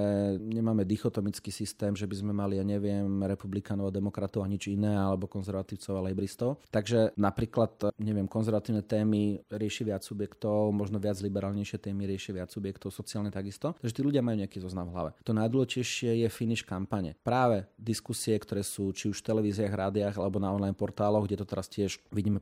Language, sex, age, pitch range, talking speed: Slovak, male, 30-49, 100-120 Hz, 180 wpm